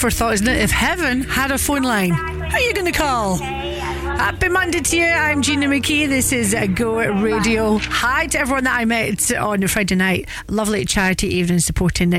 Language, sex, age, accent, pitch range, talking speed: English, female, 40-59, British, 200-265 Hz, 190 wpm